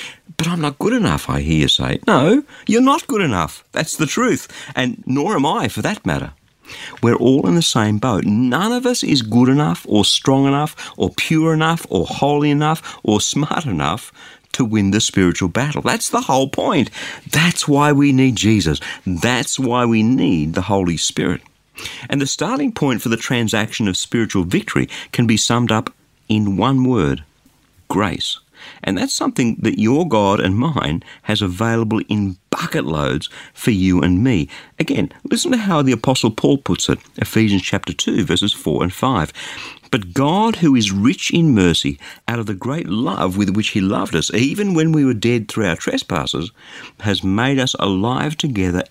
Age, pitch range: 50-69, 100-145 Hz